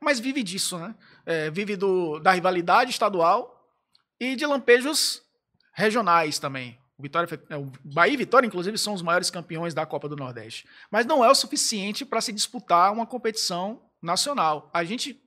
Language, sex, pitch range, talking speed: Portuguese, male, 160-215 Hz, 150 wpm